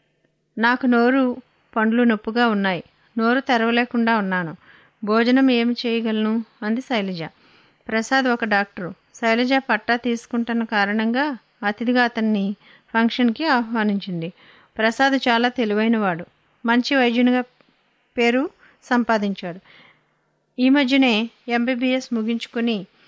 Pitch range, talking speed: 220-250 Hz, 90 wpm